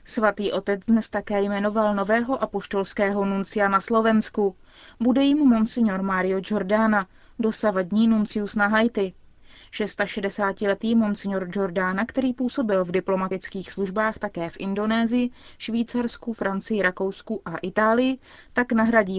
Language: Czech